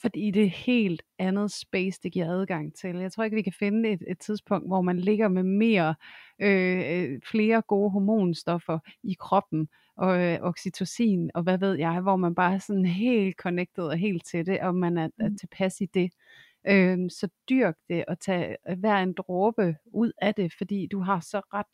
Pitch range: 170-200 Hz